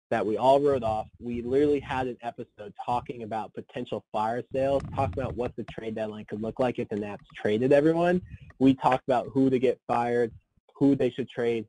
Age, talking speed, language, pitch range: 20-39, 205 wpm, English, 110-135 Hz